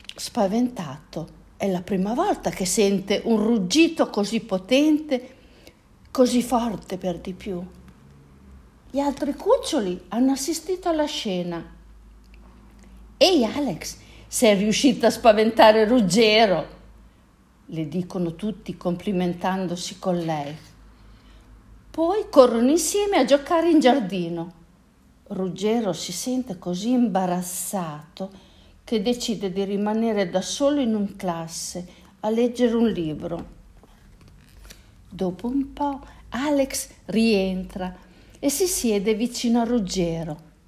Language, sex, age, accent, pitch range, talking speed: Italian, female, 50-69, native, 180-255 Hz, 105 wpm